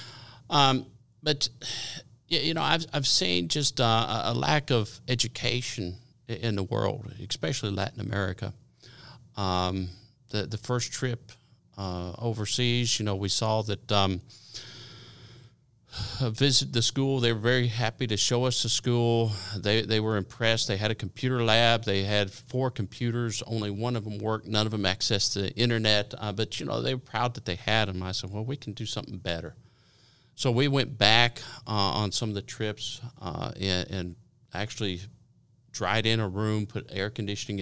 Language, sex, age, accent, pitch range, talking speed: English, male, 50-69, American, 105-125 Hz, 170 wpm